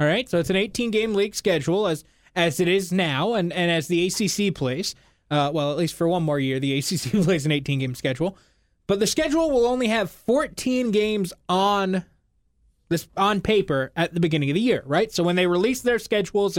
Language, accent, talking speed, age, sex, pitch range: English, American, 210 wpm, 20-39, male, 170-220 Hz